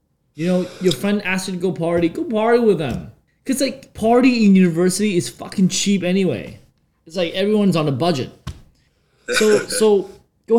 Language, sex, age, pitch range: Thai, male, 20-39, 130-190 Hz